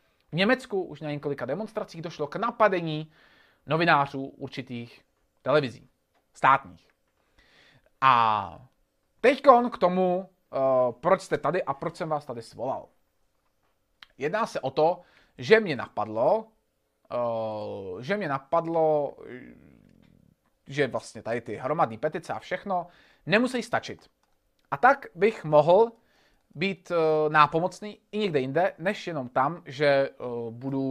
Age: 30-49